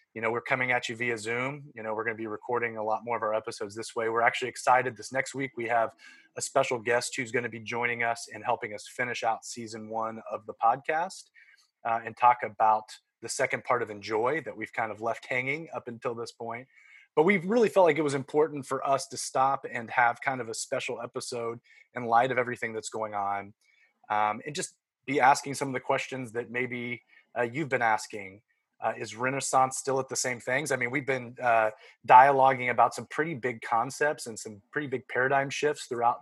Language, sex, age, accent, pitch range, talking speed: English, male, 30-49, American, 115-135 Hz, 225 wpm